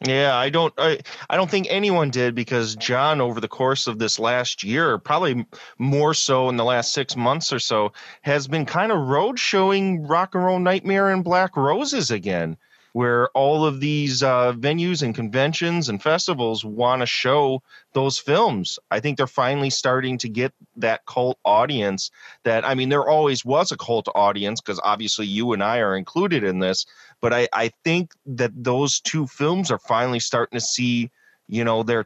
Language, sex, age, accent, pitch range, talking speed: English, male, 30-49, American, 110-140 Hz, 190 wpm